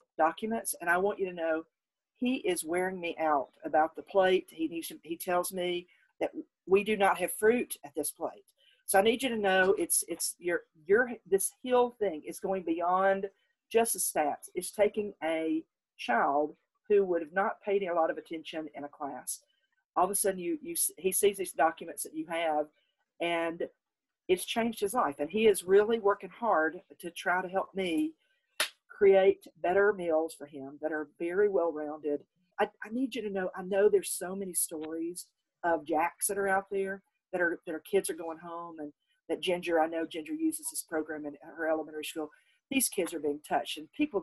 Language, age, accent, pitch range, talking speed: English, 50-69, American, 165-230 Hz, 205 wpm